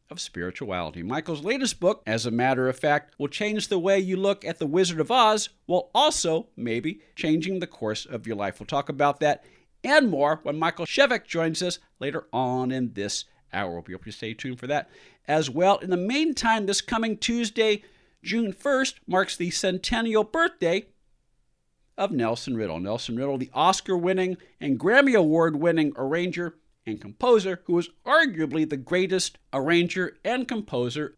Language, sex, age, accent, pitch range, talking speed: English, male, 50-69, American, 140-195 Hz, 170 wpm